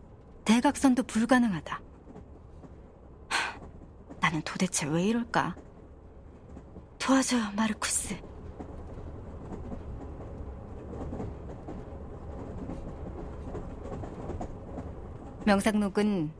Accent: native